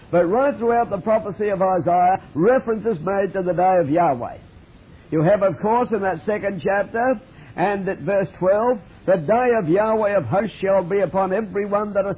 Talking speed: 190 wpm